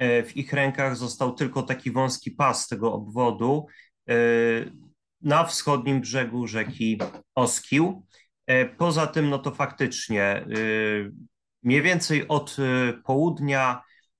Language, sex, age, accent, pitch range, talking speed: Polish, male, 30-49, native, 115-140 Hz, 100 wpm